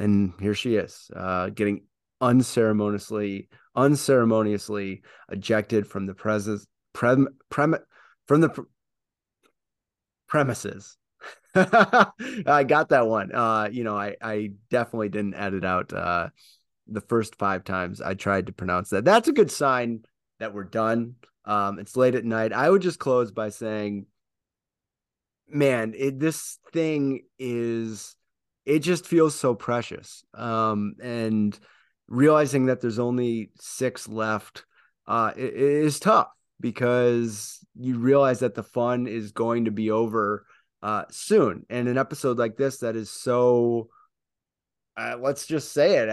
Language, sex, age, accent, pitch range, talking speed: English, male, 30-49, American, 105-125 Hz, 130 wpm